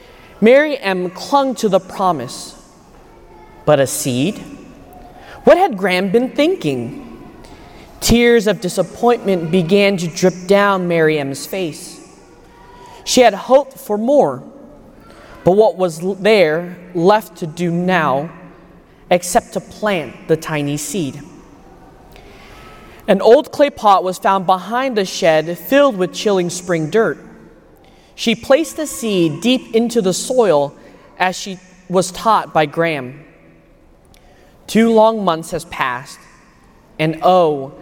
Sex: male